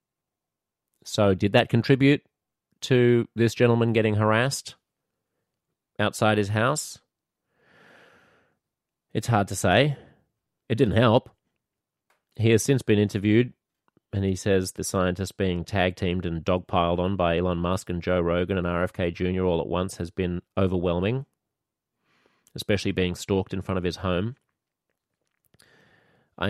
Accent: Australian